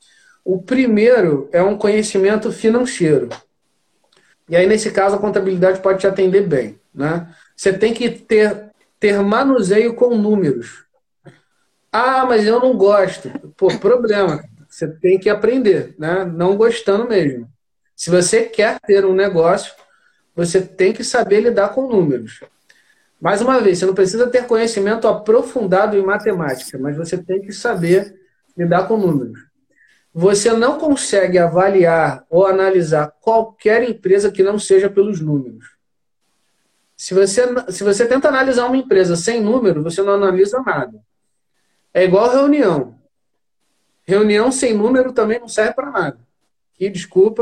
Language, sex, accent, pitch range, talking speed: Portuguese, male, Brazilian, 180-225 Hz, 140 wpm